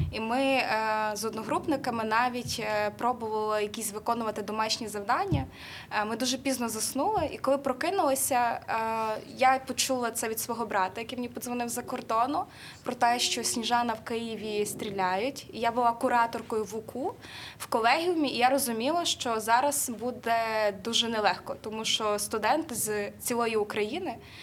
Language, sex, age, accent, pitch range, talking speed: Ukrainian, female, 20-39, native, 215-255 Hz, 140 wpm